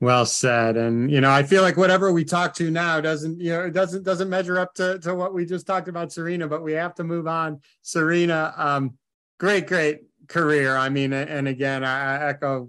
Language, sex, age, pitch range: English, male, 30-49, 135-185 Hz